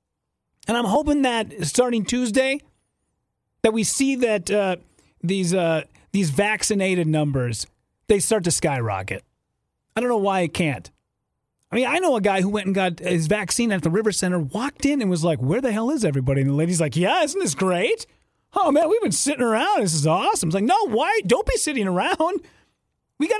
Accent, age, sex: American, 30-49, male